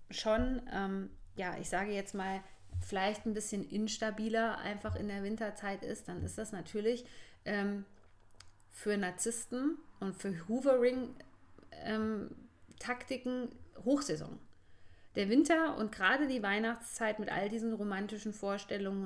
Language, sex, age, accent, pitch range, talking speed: German, female, 20-39, German, 190-230 Hz, 125 wpm